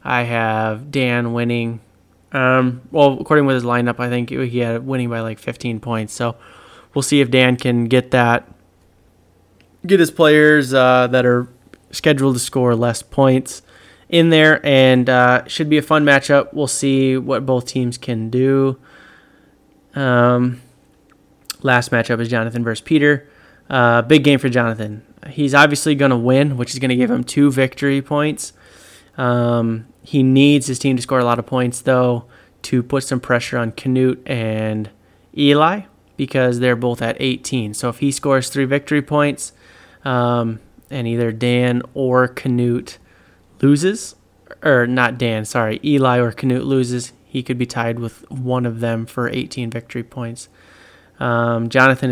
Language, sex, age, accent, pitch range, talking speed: English, male, 20-39, American, 120-135 Hz, 160 wpm